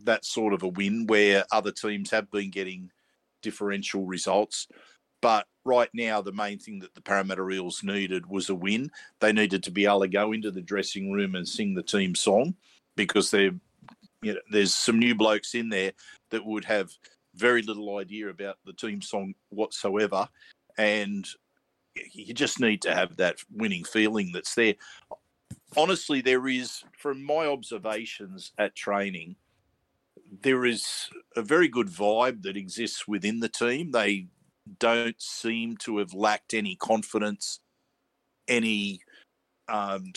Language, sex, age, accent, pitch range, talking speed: English, male, 50-69, Australian, 100-115 Hz, 150 wpm